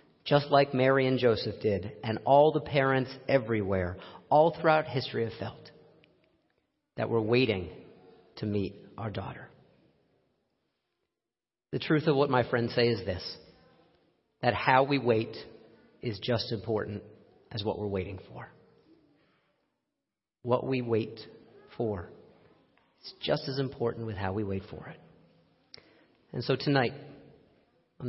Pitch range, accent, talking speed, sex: 110-140 Hz, American, 135 wpm, male